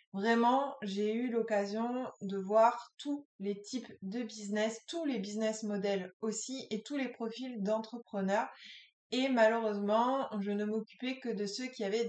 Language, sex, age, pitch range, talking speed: French, female, 20-39, 200-240 Hz, 155 wpm